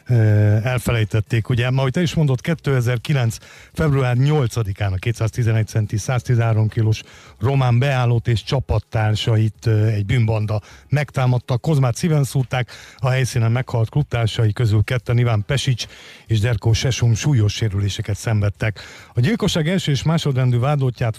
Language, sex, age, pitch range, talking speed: Hungarian, male, 50-69, 110-135 Hz, 125 wpm